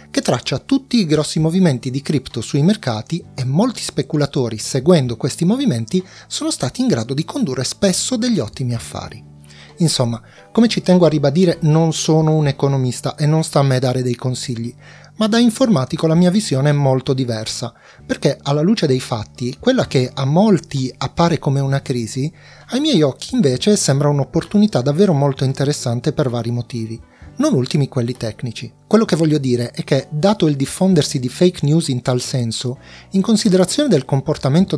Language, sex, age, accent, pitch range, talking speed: Italian, male, 30-49, native, 130-175 Hz, 175 wpm